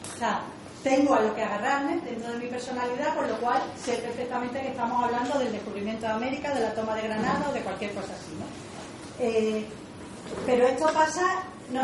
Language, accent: Spanish, Spanish